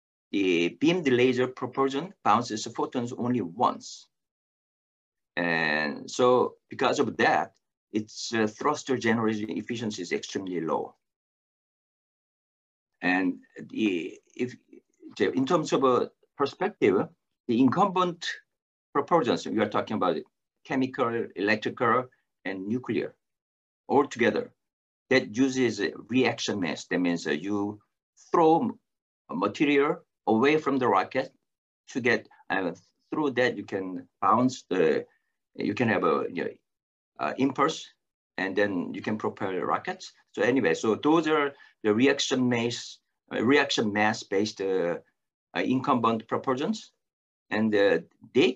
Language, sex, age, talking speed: English, male, 50-69, 125 wpm